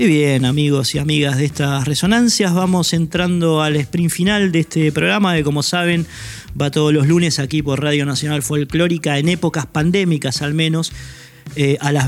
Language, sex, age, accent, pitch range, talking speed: Spanish, male, 20-39, Argentinian, 140-165 Hz, 180 wpm